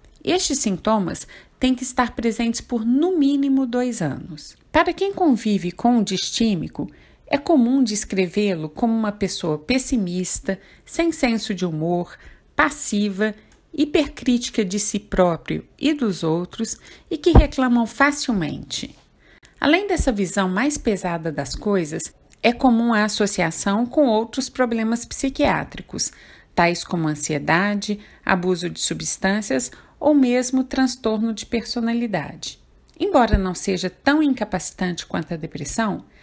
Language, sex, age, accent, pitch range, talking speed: Portuguese, female, 50-69, Brazilian, 190-260 Hz, 125 wpm